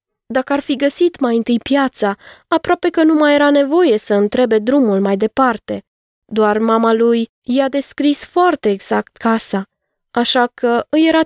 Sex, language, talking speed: female, Romanian, 160 wpm